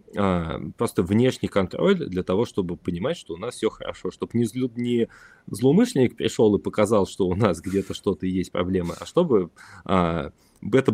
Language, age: Russian, 20-39